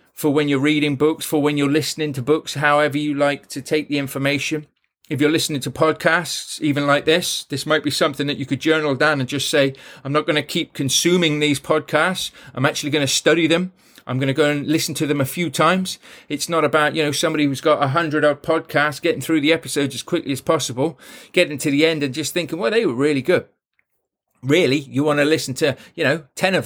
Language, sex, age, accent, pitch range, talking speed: English, male, 40-59, British, 140-160 Hz, 235 wpm